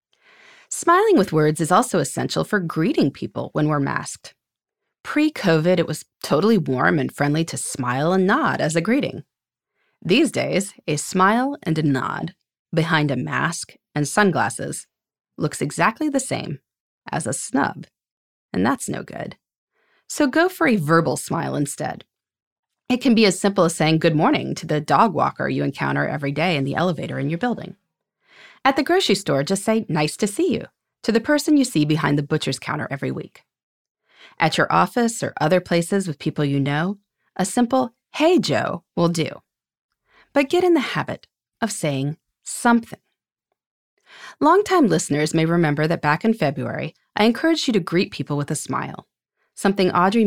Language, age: English, 30-49